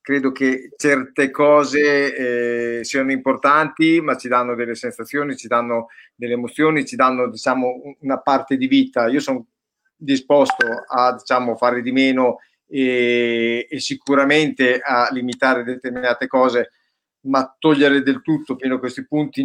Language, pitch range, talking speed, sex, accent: Italian, 120-145 Hz, 140 wpm, male, native